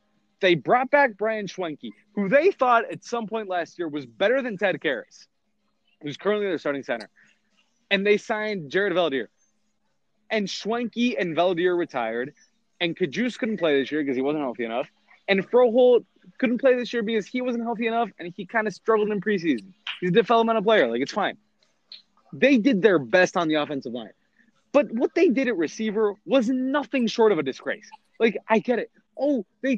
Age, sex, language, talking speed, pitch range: 20-39, male, English, 190 wpm, 200-270 Hz